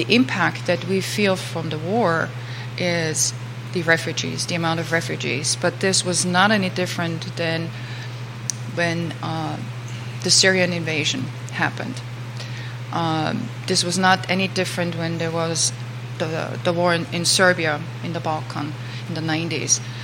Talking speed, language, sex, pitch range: 150 wpm, English, female, 120-175 Hz